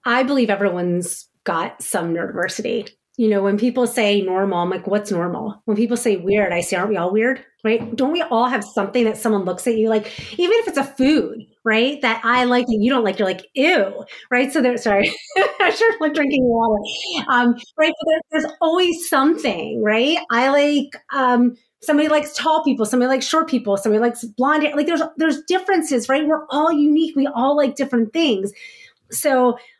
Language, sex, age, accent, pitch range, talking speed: English, female, 30-49, American, 215-280 Hz, 200 wpm